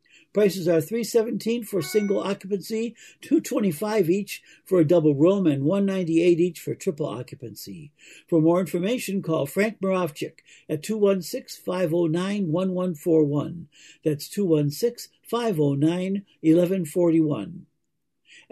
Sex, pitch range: male, 160-205 Hz